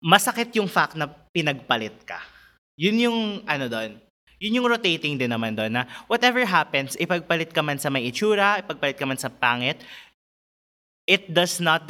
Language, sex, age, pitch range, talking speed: Filipino, male, 20-39, 135-195 Hz, 165 wpm